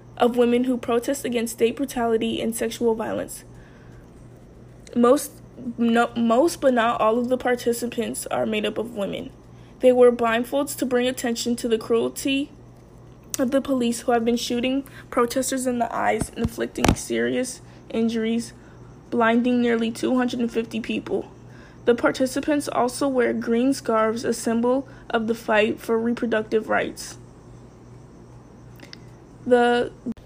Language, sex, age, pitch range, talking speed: English, female, 10-29, 225-255 Hz, 130 wpm